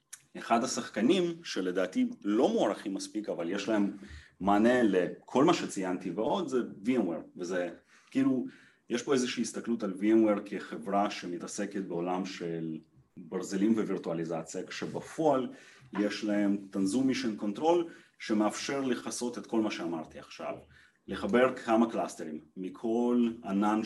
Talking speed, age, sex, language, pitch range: 120 wpm, 30-49, male, Hebrew, 100-115 Hz